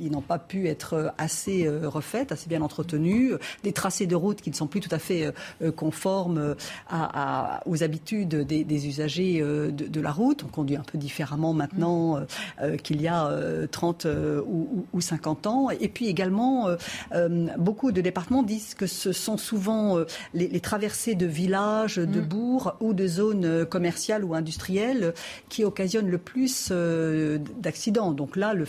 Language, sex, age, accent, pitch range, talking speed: French, female, 50-69, French, 155-200 Hz, 155 wpm